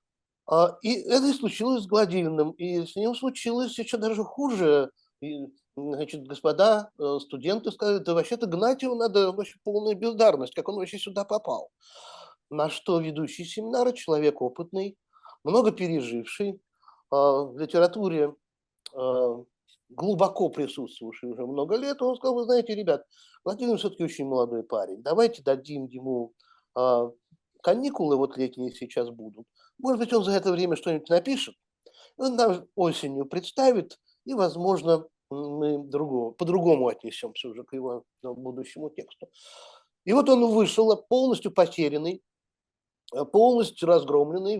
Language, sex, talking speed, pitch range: Russian, male, 130 wpm, 145-230 Hz